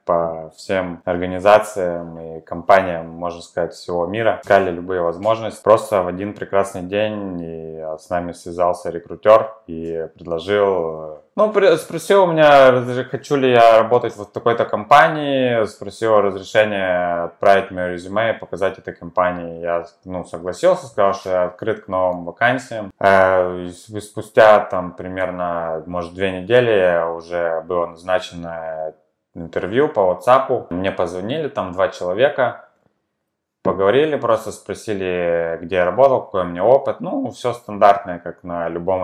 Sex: male